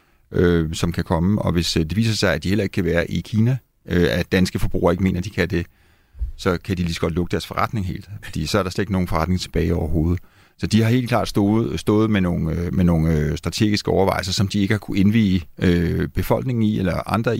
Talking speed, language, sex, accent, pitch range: 250 wpm, Danish, male, native, 90-110 Hz